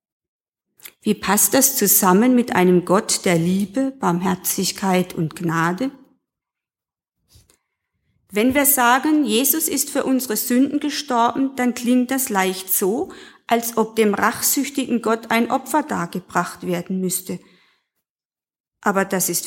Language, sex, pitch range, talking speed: German, female, 180-250 Hz, 120 wpm